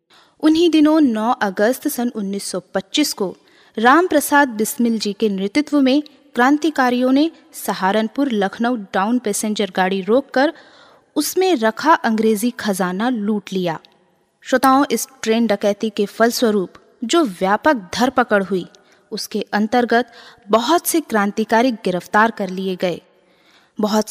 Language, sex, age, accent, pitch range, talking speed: Hindi, female, 20-39, native, 200-275 Hz, 120 wpm